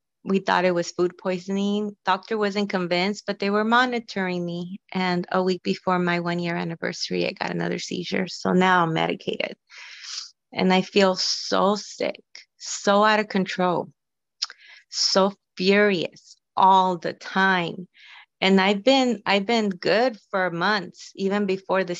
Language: English